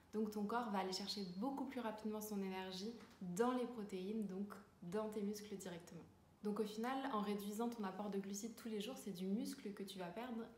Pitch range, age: 195-230 Hz, 20-39